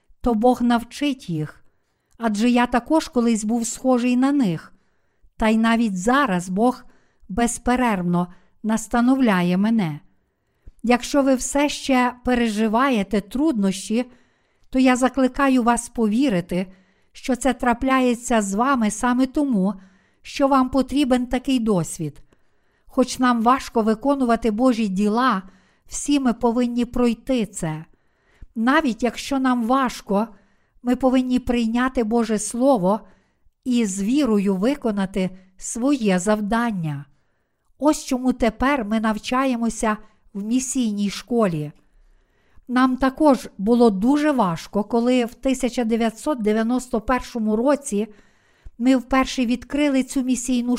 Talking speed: 110 wpm